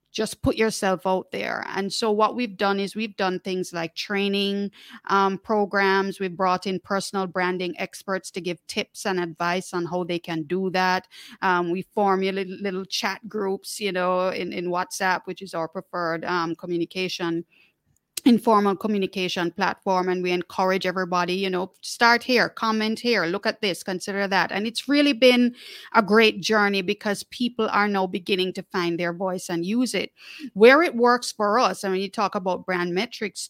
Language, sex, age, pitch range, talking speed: English, female, 30-49, 185-215 Hz, 185 wpm